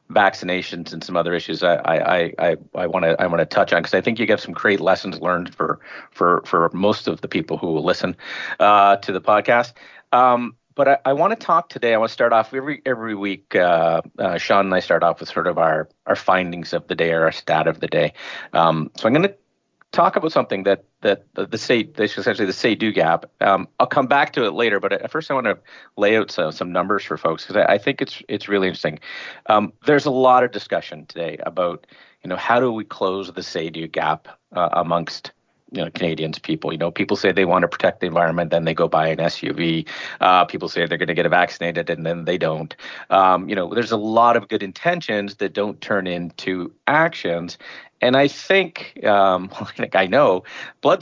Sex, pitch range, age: male, 90-120 Hz, 40-59